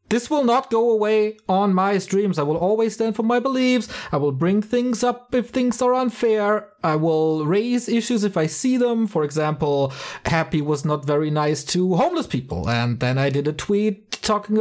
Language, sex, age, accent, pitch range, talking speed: English, male, 30-49, German, 150-225 Hz, 200 wpm